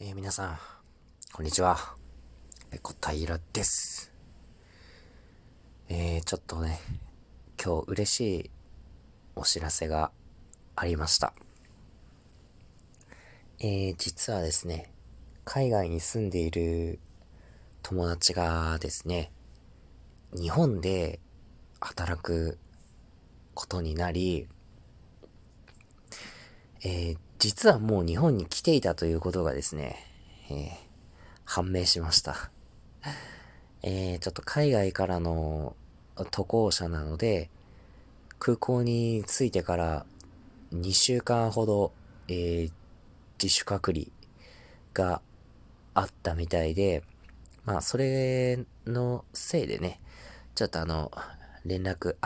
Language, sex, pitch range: Japanese, male, 80-100 Hz